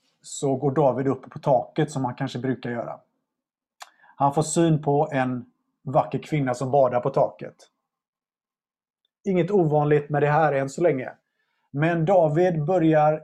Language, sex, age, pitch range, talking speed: Swedish, male, 30-49, 130-160 Hz, 150 wpm